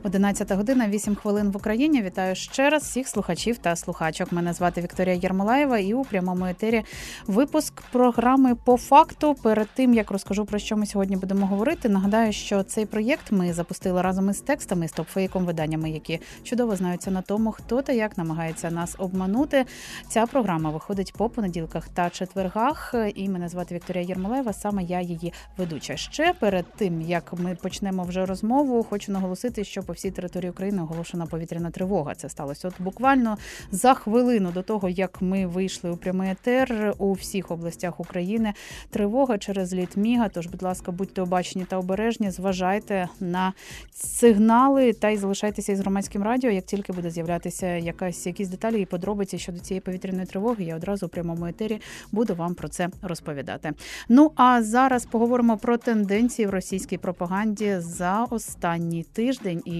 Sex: female